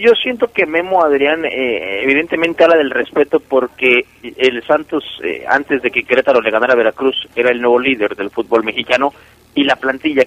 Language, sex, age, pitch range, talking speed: Italian, male, 40-59, 125-165 Hz, 185 wpm